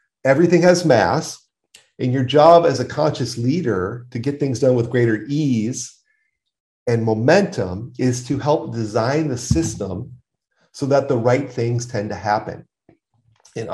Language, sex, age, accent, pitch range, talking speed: English, male, 40-59, American, 110-130 Hz, 150 wpm